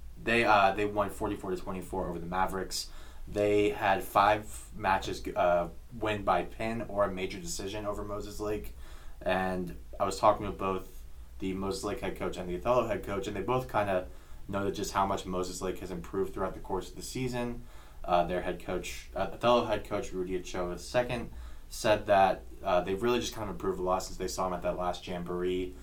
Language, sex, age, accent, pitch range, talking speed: English, male, 20-39, American, 80-95 Hz, 205 wpm